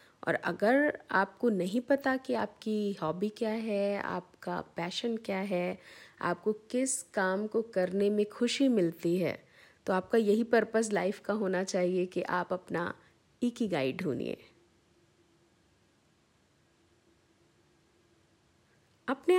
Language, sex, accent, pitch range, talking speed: Hindi, female, native, 185-250 Hz, 120 wpm